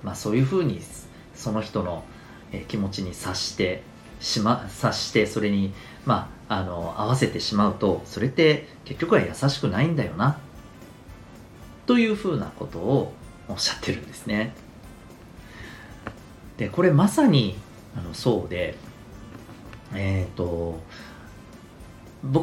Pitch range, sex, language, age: 100-160 Hz, male, Japanese, 40-59